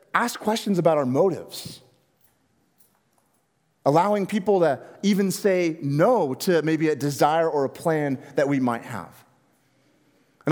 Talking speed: 130 wpm